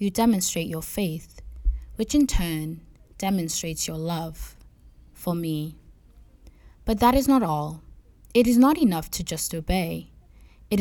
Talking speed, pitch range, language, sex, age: 140 wpm, 160-205 Hz, English, female, 20-39